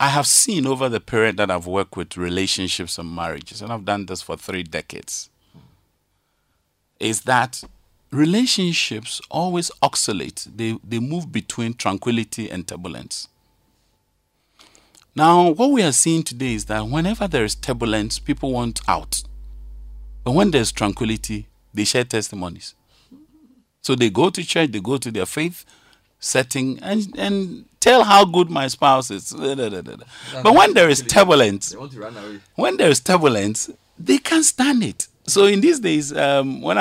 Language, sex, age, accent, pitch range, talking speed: English, male, 50-69, Nigerian, 100-150 Hz, 150 wpm